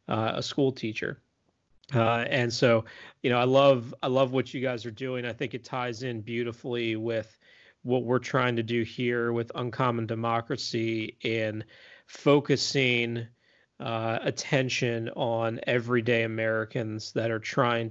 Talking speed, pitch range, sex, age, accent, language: 145 wpm, 115-130 Hz, male, 30-49, American, English